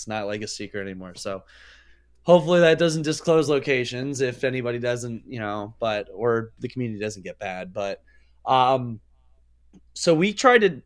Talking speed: 165 wpm